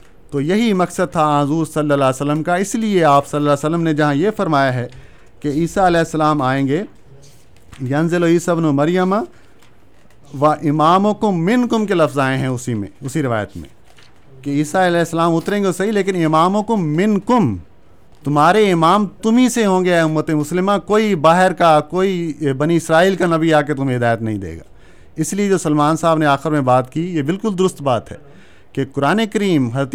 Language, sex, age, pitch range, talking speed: Urdu, male, 50-69, 135-180 Hz, 205 wpm